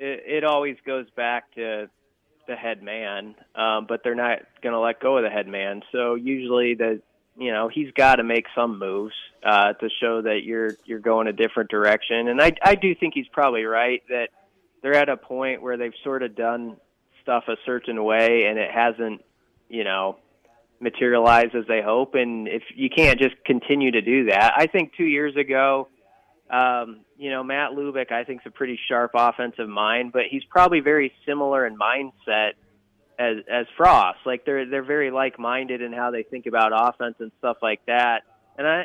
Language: English